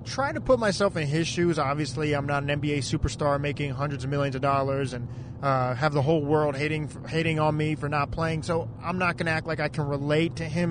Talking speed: 240 wpm